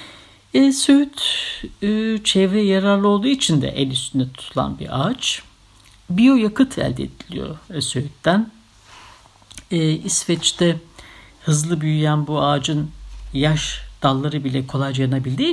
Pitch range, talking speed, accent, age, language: 135-175 Hz, 110 wpm, native, 60-79, Turkish